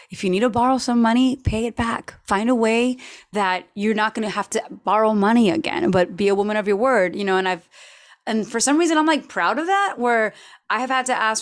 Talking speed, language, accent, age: 255 wpm, English, American, 30-49